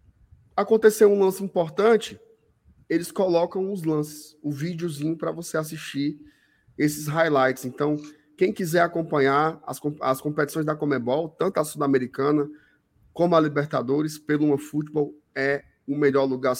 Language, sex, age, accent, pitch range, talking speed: Portuguese, male, 20-39, Brazilian, 140-175 Hz, 135 wpm